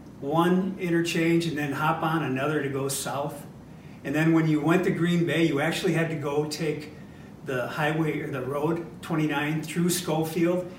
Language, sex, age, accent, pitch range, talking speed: English, male, 50-69, American, 140-175 Hz, 180 wpm